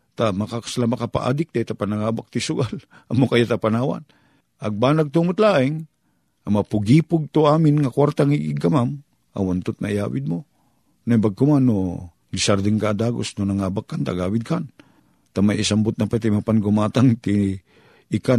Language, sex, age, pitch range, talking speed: Filipino, male, 50-69, 90-115 Hz, 130 wpm